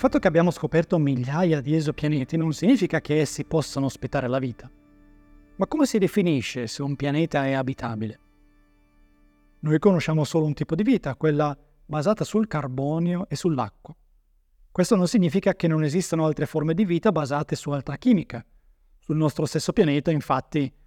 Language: Italian